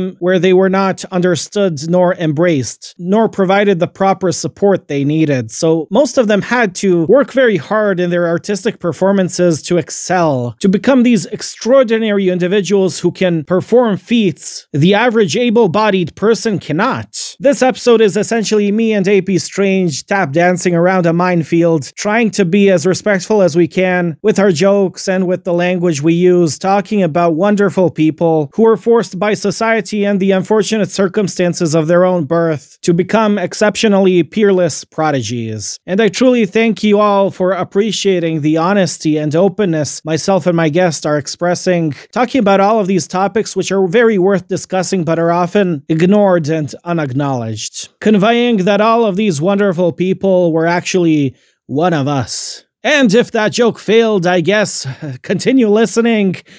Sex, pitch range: male, 170-210 Hz